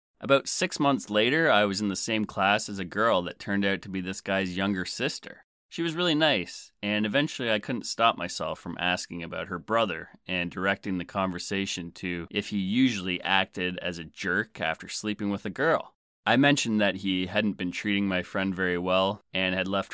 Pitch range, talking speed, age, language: 95-105 Hz, 205 wpm, 30-49, English